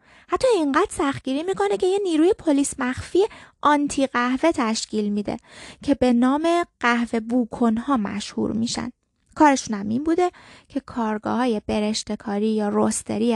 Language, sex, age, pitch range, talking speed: Persian, female, 20-39, 220-300 Hz, 135 wpm